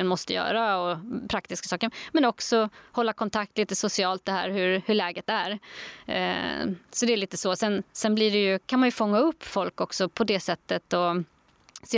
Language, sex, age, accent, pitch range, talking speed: Swedish, female, 20-39, native, 185-225 Hz, 200 wpm